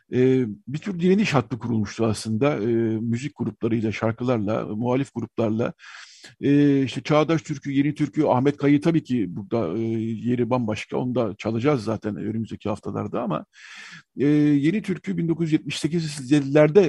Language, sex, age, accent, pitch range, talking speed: Turkish, male, 50-69, native, 115-150 Hz, 135 wpm